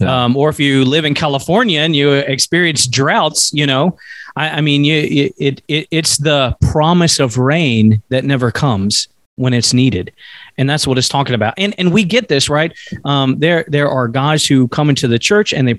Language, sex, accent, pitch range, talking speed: English, male, American, 120-150 Hz, 205 wpm